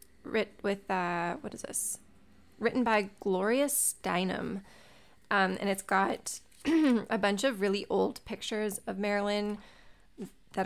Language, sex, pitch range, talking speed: English, female, 185-225 Hz, 130 wpm